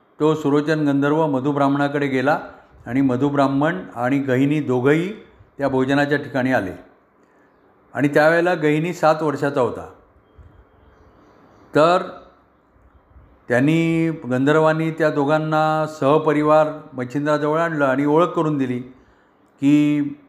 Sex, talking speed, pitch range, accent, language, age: male, 100 wpm, 125-150 Hz, native, Marathi, 50-69